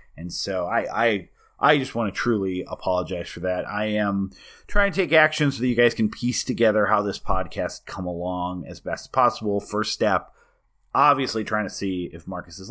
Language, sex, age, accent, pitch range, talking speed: English, male, 30-49, American, 95-120 Hz, 205 wpm